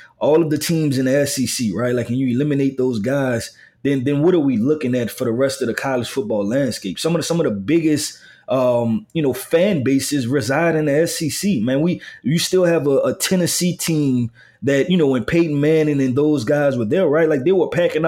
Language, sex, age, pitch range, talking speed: English, male, 20-39, 130-165 Hz, 230 wpm